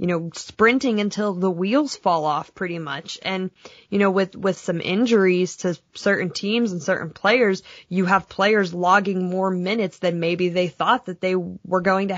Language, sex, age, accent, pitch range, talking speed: English, female, 20-39, American, 175-205 Hz, 185 wpm